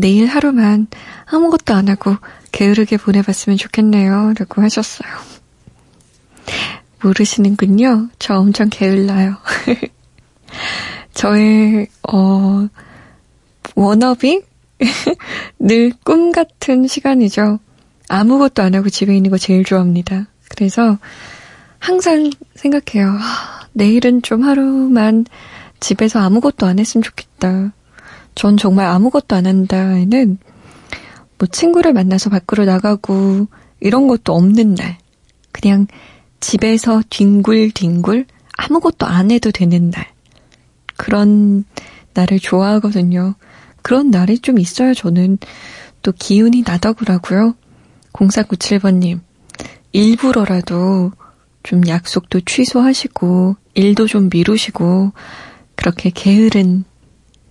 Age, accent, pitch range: 20-39, native, 195-230 Hz